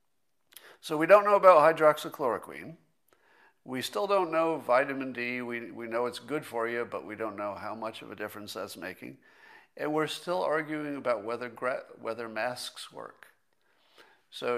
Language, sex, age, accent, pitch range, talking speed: English, male, 50-69, American, 110-145 Hz, 165 wpm